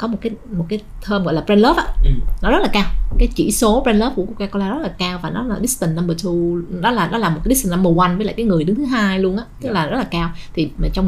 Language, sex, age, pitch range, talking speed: Vietnamese, female, 20-39, 160-200 Hz, 310 wpm